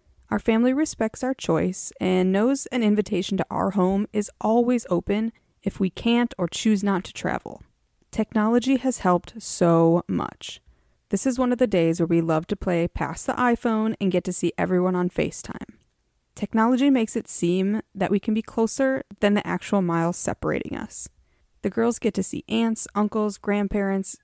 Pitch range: 180-225 Hz